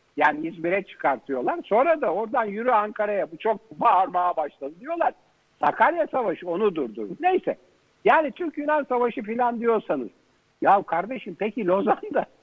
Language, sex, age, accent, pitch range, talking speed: Turkish, male, 60-79, native, 185-270 Hz, 130 wpm